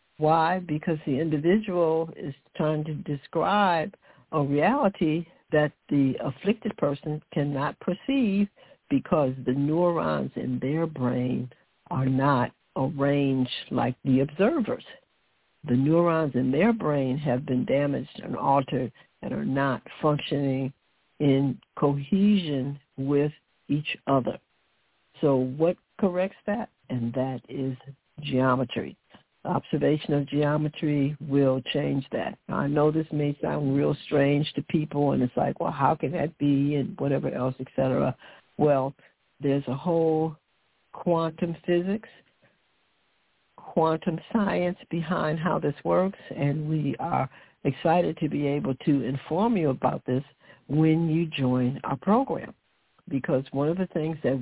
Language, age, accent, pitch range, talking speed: English, 60-79, American, 135-165 Hz, 130 wpm